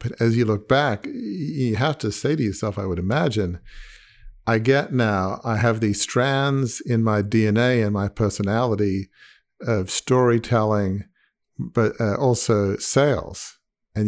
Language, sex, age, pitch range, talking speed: English, male, 50-69, 100-120 Hz, 140 wpm